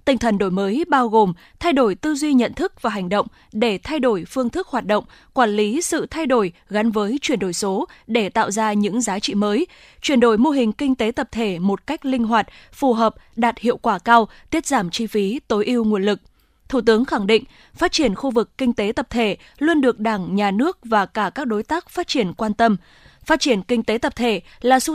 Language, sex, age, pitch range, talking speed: Vietnamese, female, 20-39, 210-265 Hz, 240 wpm